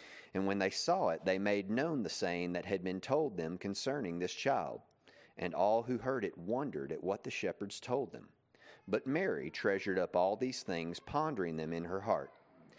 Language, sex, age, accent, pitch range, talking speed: English, male, 40-59, American, 90-105 Hz, 195 wpm